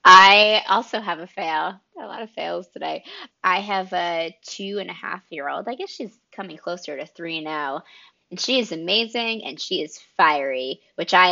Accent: American